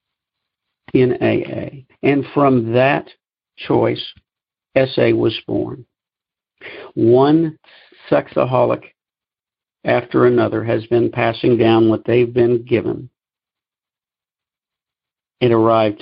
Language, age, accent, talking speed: English, 50-69, American, 80 wpm